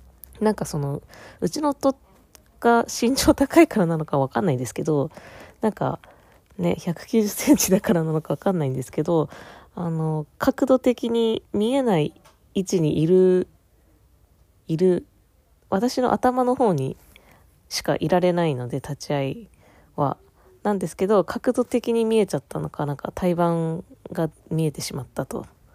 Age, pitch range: 20-39, 150-200 Hz